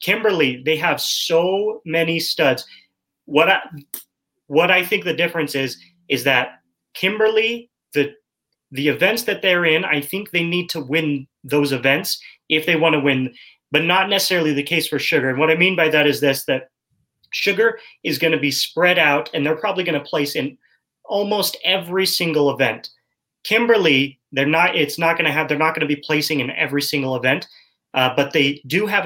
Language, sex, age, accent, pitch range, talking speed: English, male, 30-49, American, 140-180 Hz, 190 wpm